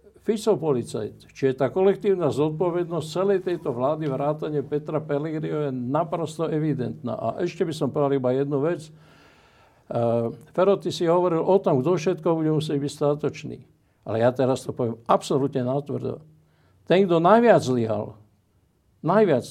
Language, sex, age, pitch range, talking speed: Slovak, male, 60-79, 130-165 Hz, 145 wpm